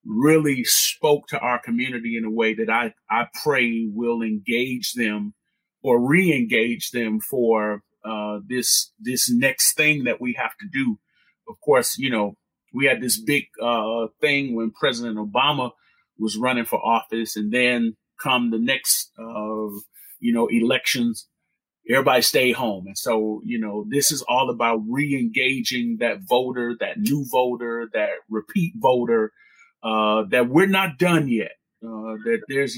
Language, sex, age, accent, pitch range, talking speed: English, male, 30-49, American, 110-145 Hz, 155 wpm